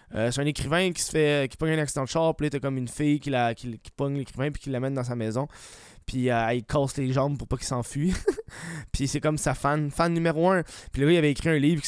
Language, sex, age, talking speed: French, male, 20-39, 290 wpm